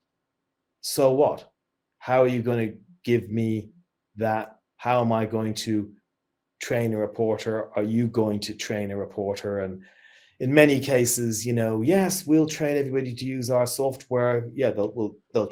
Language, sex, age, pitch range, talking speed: English, male, 30-49, 105-130 Hz, 160 wpm